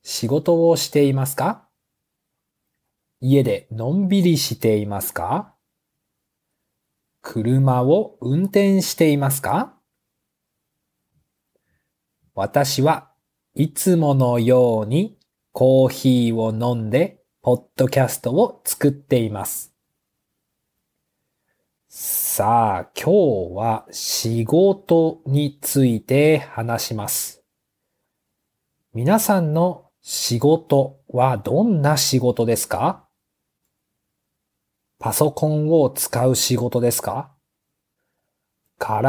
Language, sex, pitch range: Japanese, male, 125-155 Hz